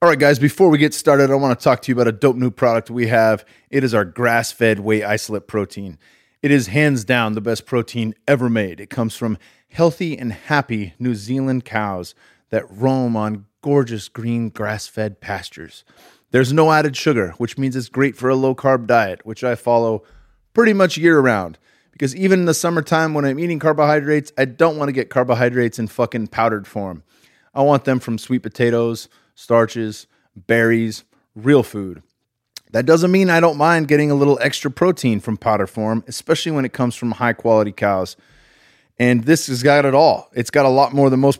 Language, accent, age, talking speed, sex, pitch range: English, American, 30-49, 195 wpm, male, 110-140 Hz